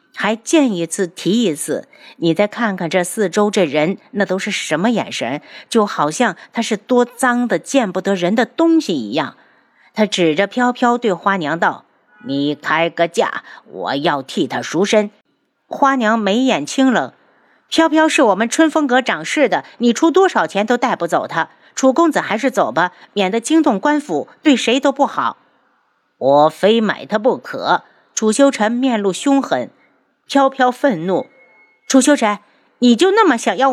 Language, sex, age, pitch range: Chinese, female, 50-69, 195-270 Hz